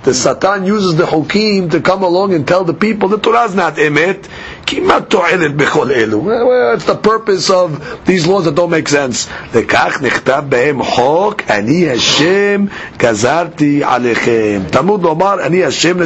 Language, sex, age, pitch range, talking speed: English, male, 50-69, 150-200 Hz, 105 wpm